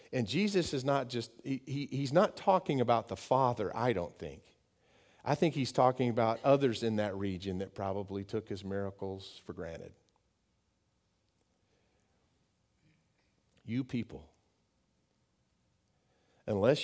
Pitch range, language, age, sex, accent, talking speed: 110-170 Hz, English, 50-69, male, American, 120 wpm